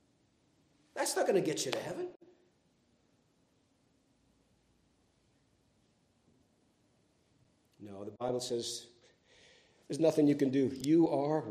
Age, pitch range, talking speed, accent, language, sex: 50-69, 130-155 Hz, 100 wpm, American, English, male